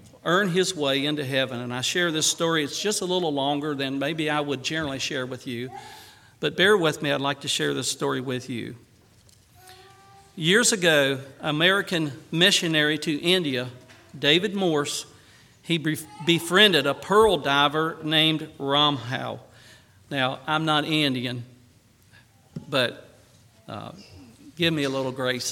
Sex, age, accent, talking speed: male, 50-69, American, 145 wpm